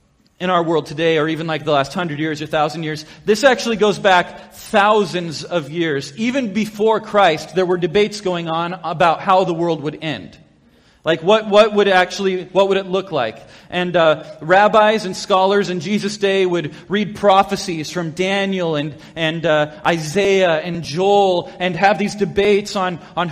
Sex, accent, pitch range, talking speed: male, American, 170-210 Hz, 180 wpm